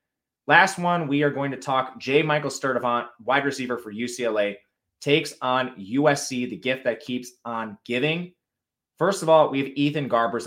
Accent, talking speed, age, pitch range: American, 170 wpm, 20-39, 120-145 Hz